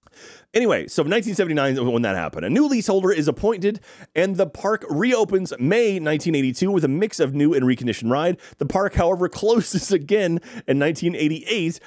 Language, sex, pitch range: English, male, 125-180 Hz